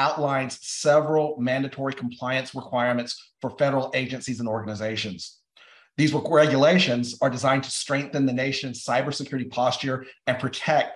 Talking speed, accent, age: 120 wpm, American, 40-59